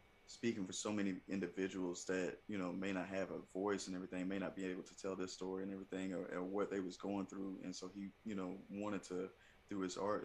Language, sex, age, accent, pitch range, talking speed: English, male, 20-39, American, 90-100 Hz, 245 wpm